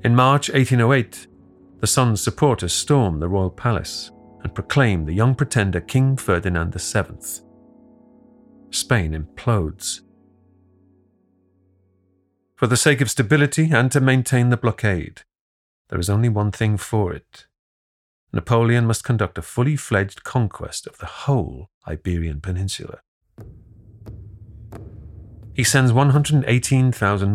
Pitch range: 95-120 Hz